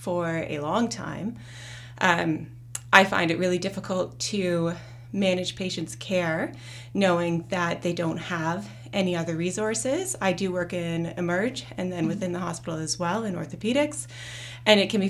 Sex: female